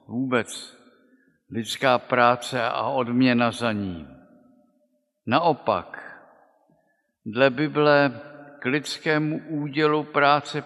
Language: Czech